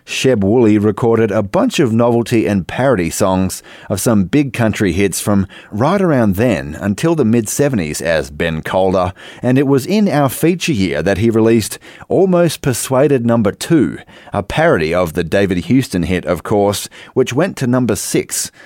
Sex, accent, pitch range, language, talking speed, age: male, Australian, 100-135 Hz, English, 180 wpm, 30-49